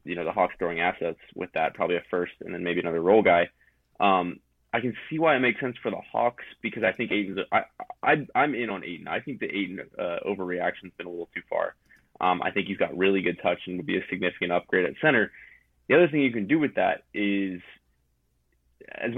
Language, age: English, 20-39